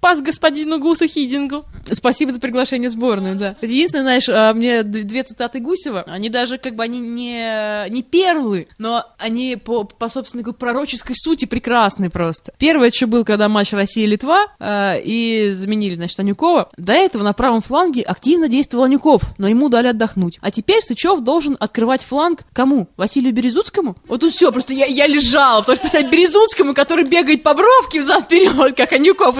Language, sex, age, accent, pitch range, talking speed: Russian, female, 20-39, native, 210-295 Hz, 165 wpm